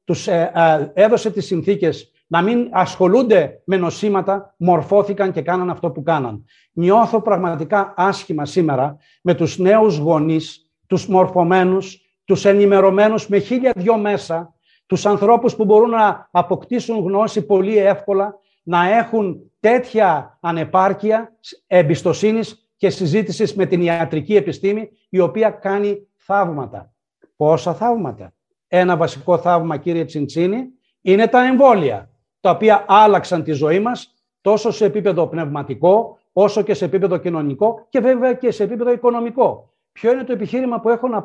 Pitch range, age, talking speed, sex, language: 175-220 Hz, 60-79, 140 wpm, male, Greek